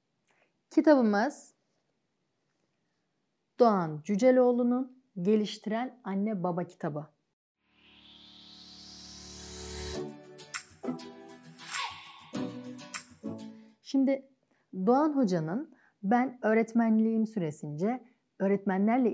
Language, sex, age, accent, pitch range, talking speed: Turkish, female, 30-49, native, 180-240 Hz, 40 wpm